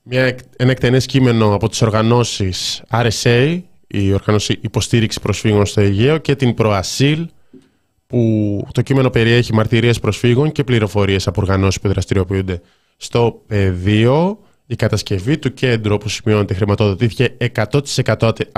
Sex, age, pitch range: male, 20-39, 105-135 Hz